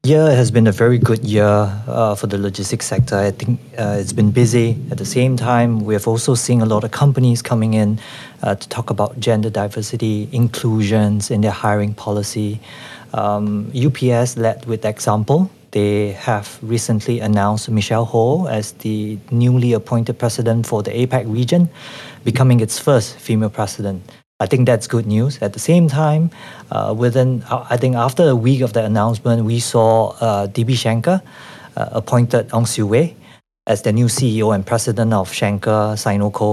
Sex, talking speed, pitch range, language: male, 175 wpm, 105-125 Hz, English